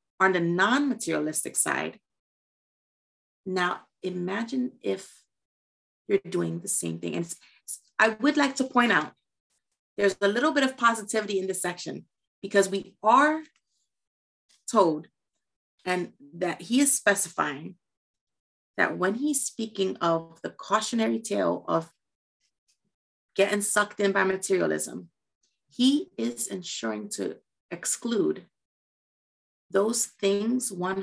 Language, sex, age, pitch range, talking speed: English, female, 30-49, 165-210 Hz, 115 wpm